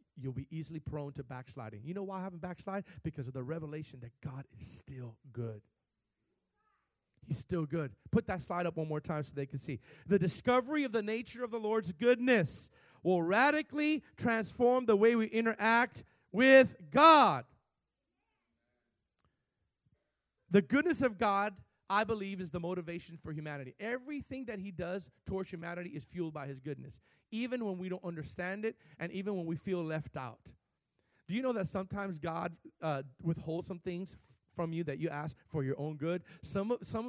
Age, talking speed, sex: 40-59, 180 wpm, male